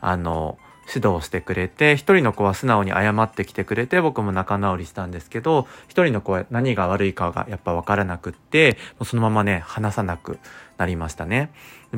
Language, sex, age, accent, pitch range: Japanese, male, 30-49, native, 95-135 Hz